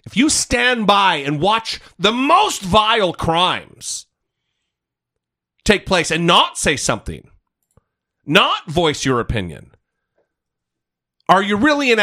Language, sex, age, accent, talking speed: English, male, 40-59, American, 120 wpm